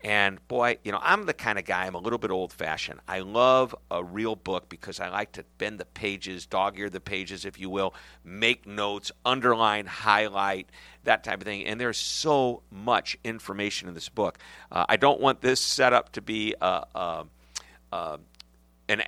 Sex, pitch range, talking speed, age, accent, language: male, 90-115 Hz, 180 wpm, 50-69, American, English